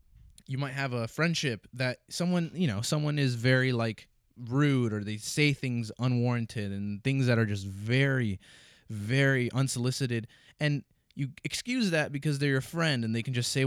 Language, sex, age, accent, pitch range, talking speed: English, male, 20-39, American, 115-145 Hz, 175 wpm